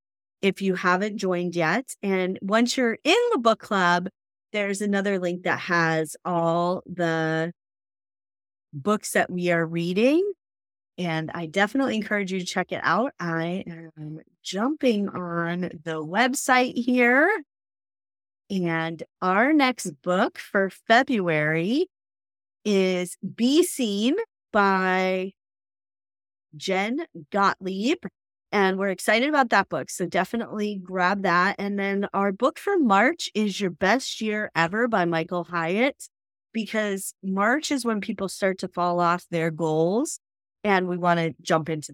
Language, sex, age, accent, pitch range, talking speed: English, female, 30-49, American, 170-235 Hz, 135 wpm